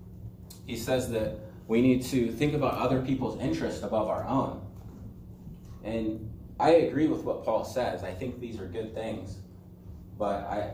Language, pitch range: English, 95-115 Hz